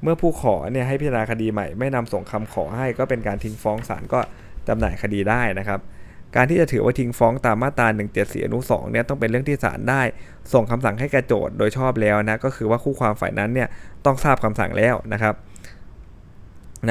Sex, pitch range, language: male, 105-125 Hz, Thai